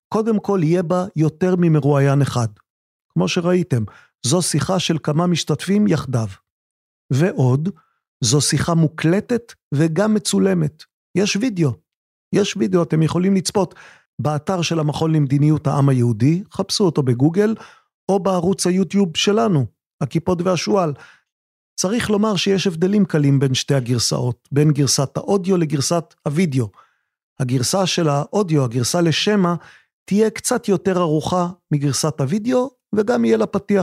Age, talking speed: 40-59, 120 wpm